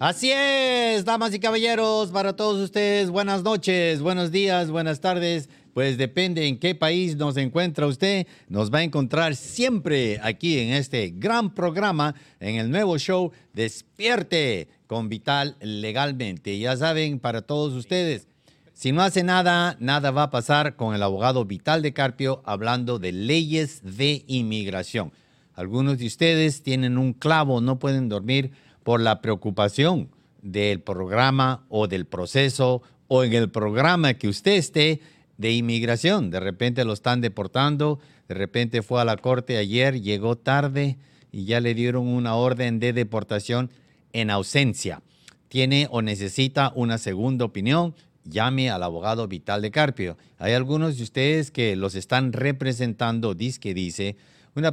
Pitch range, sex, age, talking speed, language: 115-155 Hz, male, 50-69, 150 wpm, English